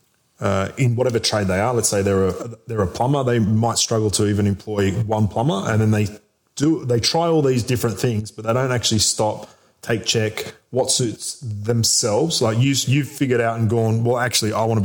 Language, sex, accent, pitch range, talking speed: English, male, Australian, 105-130 Hz, 215 wpm